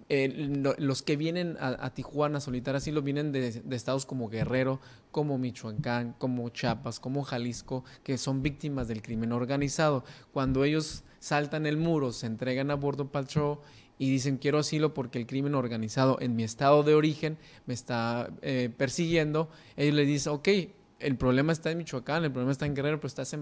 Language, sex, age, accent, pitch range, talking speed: Spanish, male, 20-39, Mexican, 130-150 Hz, 185 wpm